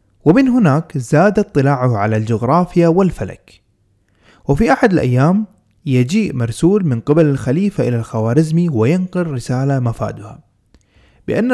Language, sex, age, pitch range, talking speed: Arabic, male, 20-39, 120-180 Hz, 110 wpm